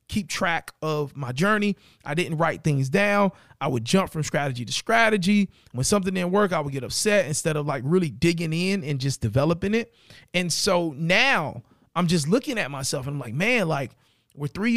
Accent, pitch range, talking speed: American, 140-180 Hz, 205 wpm